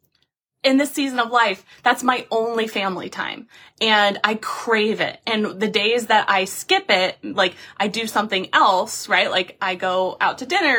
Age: 20-39